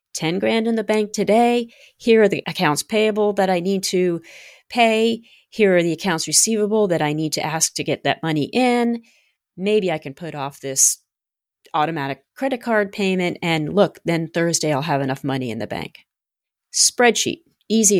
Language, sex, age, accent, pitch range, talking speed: English, female, 40-59, American, 150-210 Hz, 180 wpm